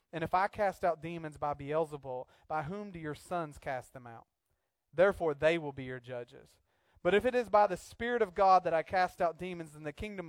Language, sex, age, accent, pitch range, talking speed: English, male, 30-49, American, 155-185 Hz, 230 wpm